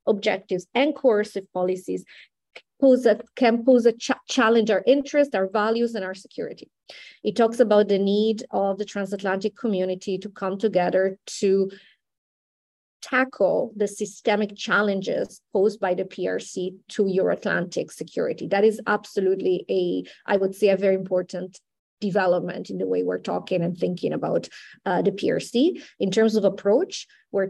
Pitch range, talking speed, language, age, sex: 185-225 Hz, 155 wpm, English, 30-49, female